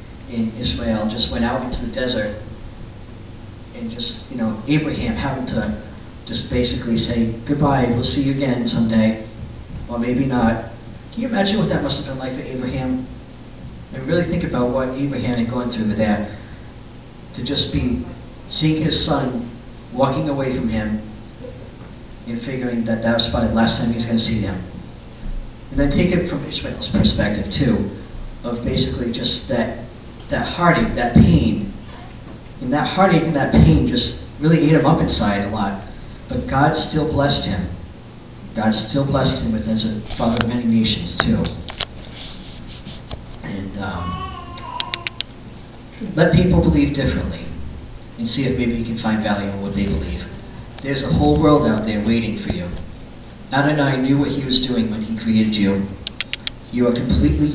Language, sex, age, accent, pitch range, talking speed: English, male, 40-59, American, 110-130 Hz, 165 wpm